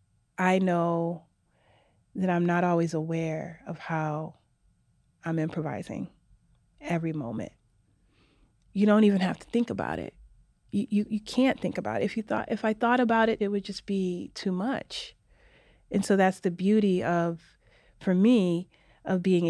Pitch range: 165-200 Hz